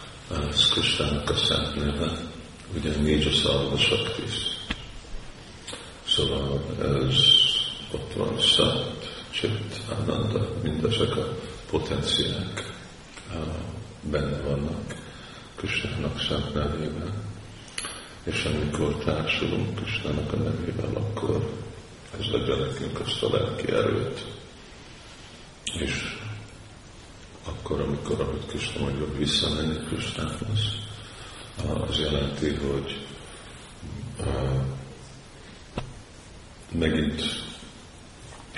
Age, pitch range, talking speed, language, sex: 50-69, 70-110 Hz, 80 wpm, Hungarian, male